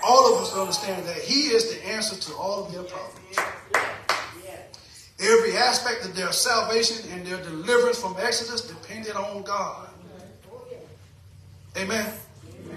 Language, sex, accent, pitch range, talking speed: English, male, American, 200-260 Hz, 130 wpm